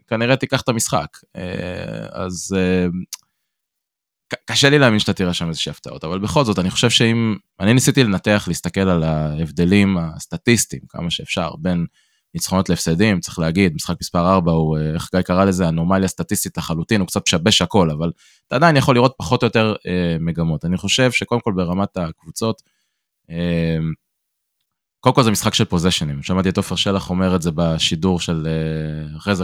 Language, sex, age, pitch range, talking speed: Hebrew, male, 20-39, 85-110 Hz, 160 wpm